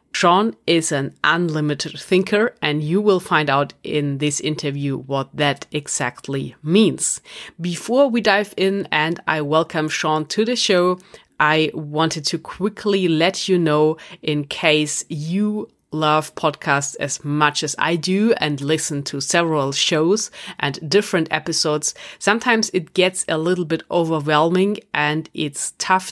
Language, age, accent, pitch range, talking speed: English, 30-49, German, 150-185 Hz, 145 wpm